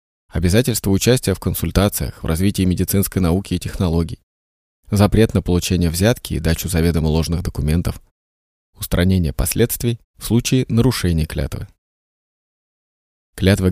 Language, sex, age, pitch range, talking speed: Russian, male, 20-39, 80-105 Hz, 115 wpm